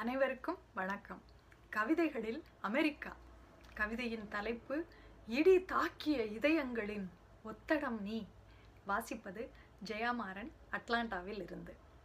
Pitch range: 235-340 Hz